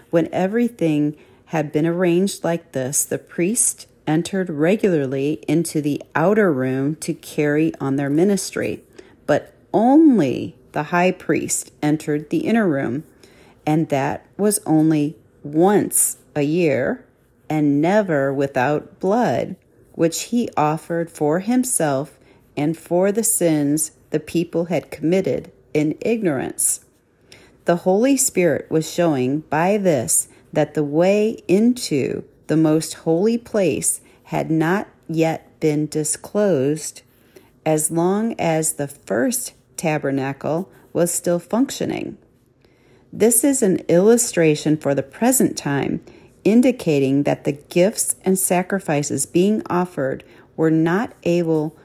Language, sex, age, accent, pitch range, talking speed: English, female, 40-59, American, 150-185 Hz, 120 wpm